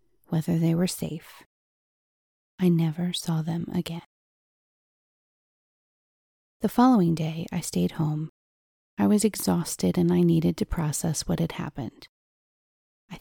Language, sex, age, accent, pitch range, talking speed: English, female, 30-49, American, 155-180 Hz, 125 wpm